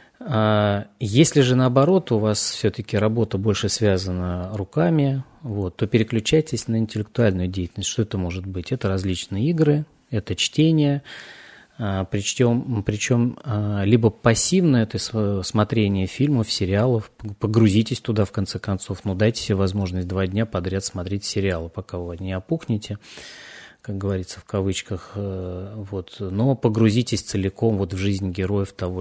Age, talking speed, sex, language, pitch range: 20-39, 125 wpm, male, Russian, 95-115 Hz